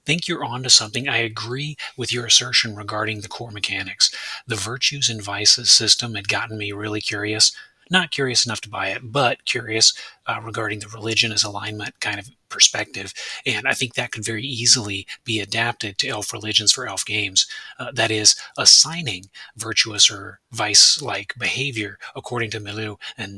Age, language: 30-49, English